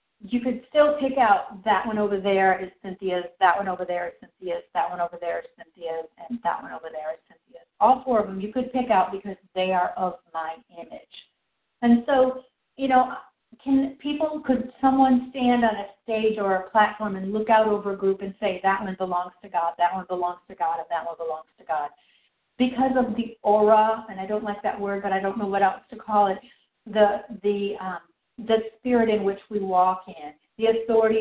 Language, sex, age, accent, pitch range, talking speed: English, female, 50-69, American, 190-235 Hz, 220 wpm